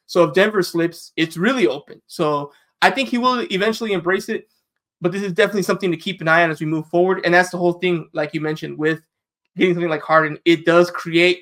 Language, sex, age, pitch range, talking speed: English, male, 20-39, 160-195 Hz, 235 wpm